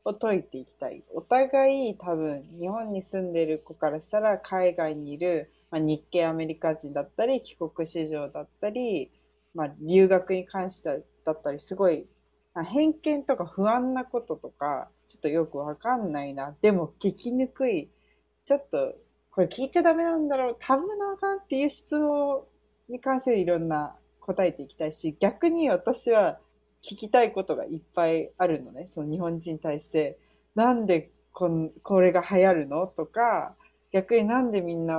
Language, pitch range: Japanese, 155-240 Hz